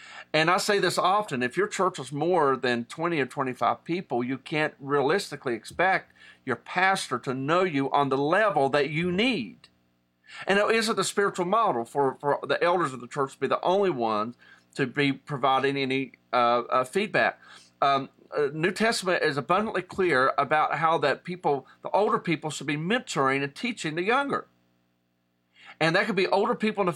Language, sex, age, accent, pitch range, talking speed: English, male, 40-59, American, 135-185 Hz, 190 wpm